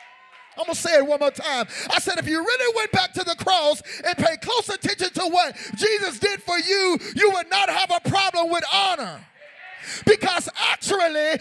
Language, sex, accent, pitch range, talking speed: English, male, American, 335-410 Hz, 200 wpm